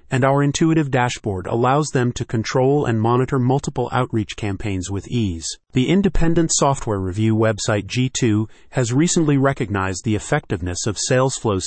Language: English